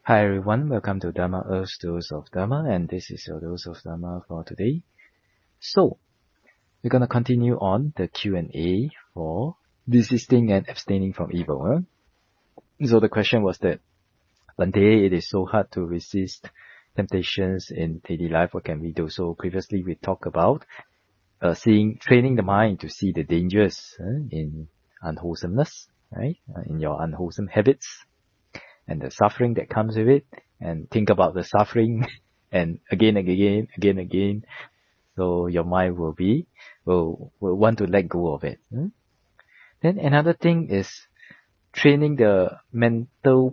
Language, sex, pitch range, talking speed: English, male, 90-125 Hz, 155 wpm